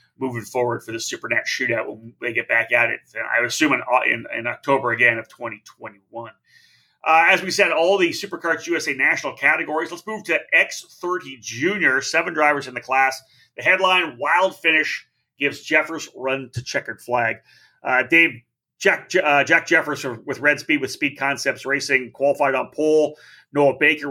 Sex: male